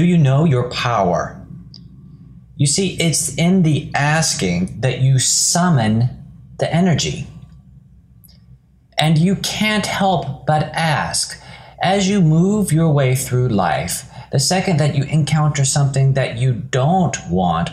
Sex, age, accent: male, 30-49, American